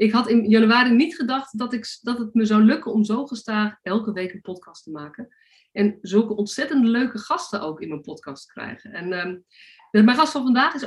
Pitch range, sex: 195-250 Hz, female